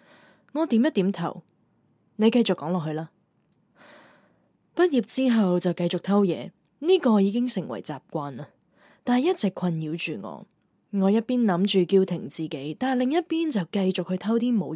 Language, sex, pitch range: Chinese, female, 175-245 Hz